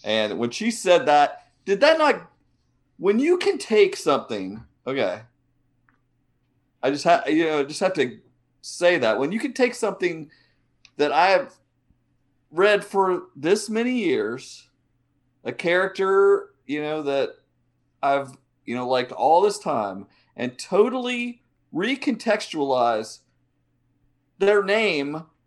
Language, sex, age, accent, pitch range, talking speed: English, male, 40-59, American, 125-180 Hz, 125 wpm